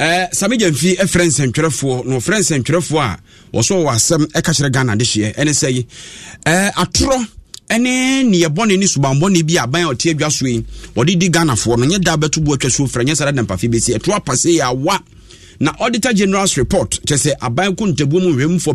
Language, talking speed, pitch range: English, 200 wpm, 135-185 Hz